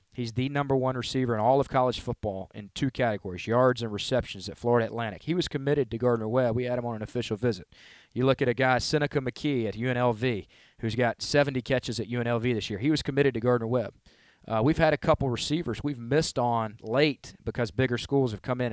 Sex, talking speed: male, 220 wpm